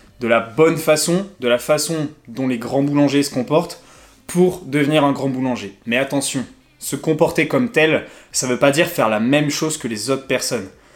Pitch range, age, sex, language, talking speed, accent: 130-170 Hz, 20-39, male, French, 205 wpm, French